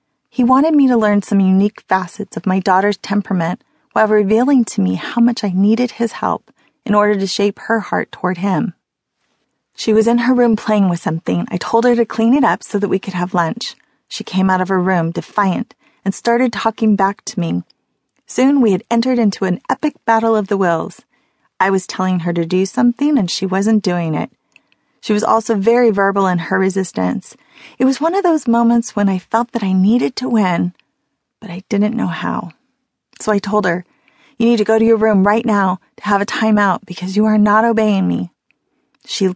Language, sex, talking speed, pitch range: English, female, 210 wpm, 190-230 Hz